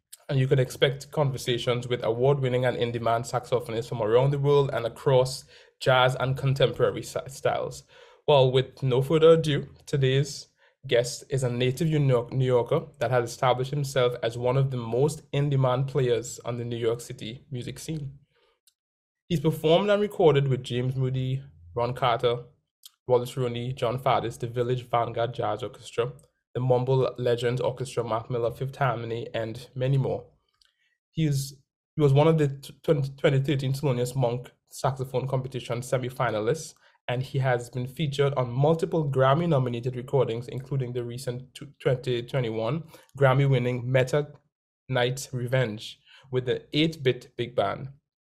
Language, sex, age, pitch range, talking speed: English, male, 20-39, 120-140 Hz, 150 wpm